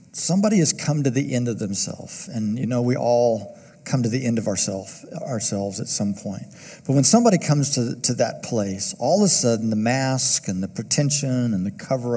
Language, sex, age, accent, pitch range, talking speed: English, male, 50-69, American, 110-130 Hz, 210 wpm